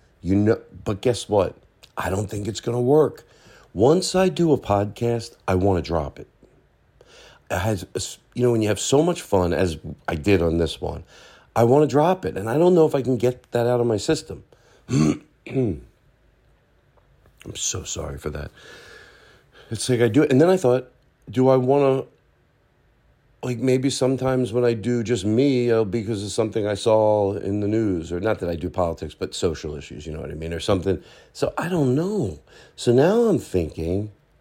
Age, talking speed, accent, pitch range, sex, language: 40-59, 200 wpm, American, 90-125 Hz, male, English